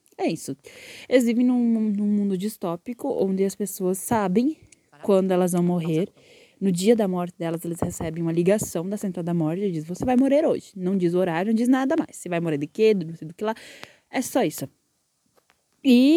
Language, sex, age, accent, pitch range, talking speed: Portuguese, female, 10-29, Brazilian, 175-235 Hz, 210 wpm